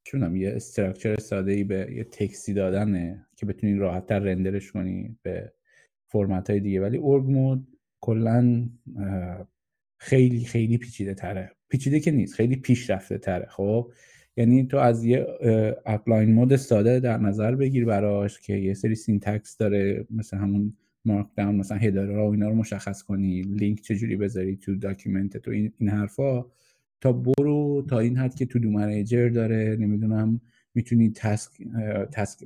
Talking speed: 160 wpm